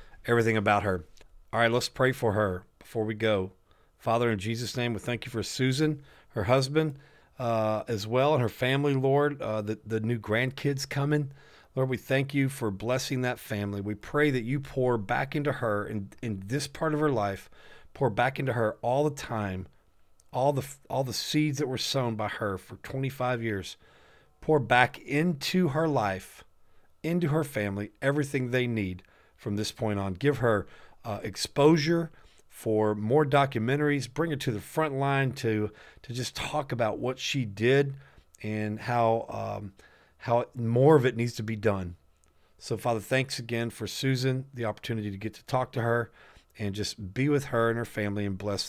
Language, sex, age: English, male, 40-59